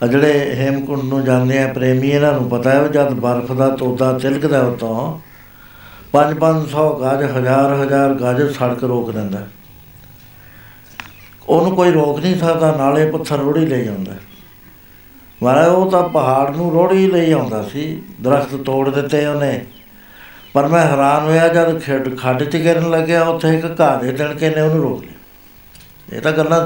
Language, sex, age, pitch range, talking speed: Punjabi, male, 60-79, 125-155 Hz, 160 wpm